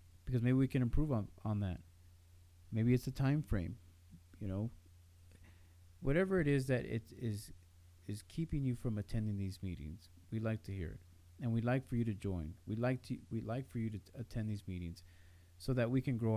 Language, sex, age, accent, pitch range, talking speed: English, male, 40-59, American, 85-120 Hz, 210 wpm